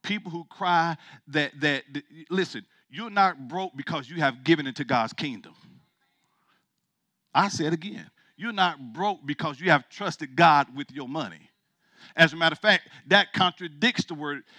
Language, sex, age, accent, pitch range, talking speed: English, male, 50-69, American, 160-205 Hz, 175 wpm